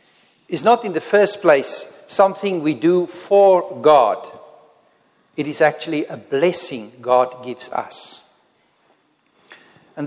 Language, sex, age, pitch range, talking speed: English, male, 50-69, 145-220 Hz, 120 wpm